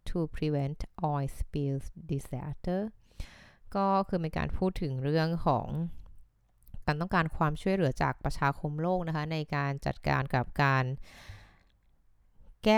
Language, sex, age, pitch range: Thai, female, 20-39, 135-170 Hz